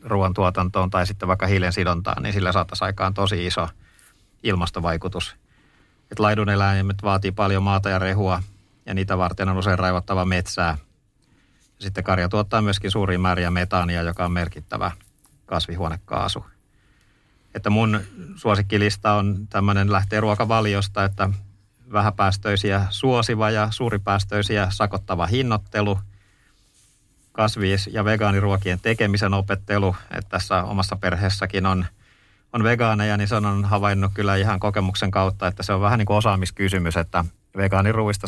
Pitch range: 95-105 Hz